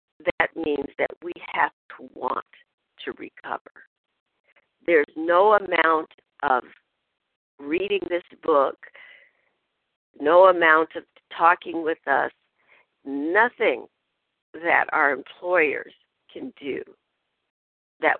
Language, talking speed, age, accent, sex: English, 95 wpm, 60-79, American, female